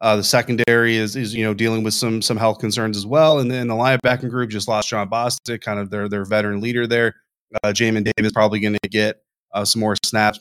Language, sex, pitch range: English, male, 105-120 Hz